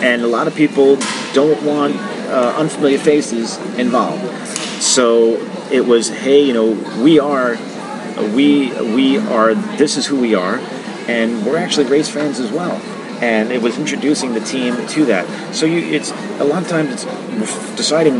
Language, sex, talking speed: English, male, 170 wpm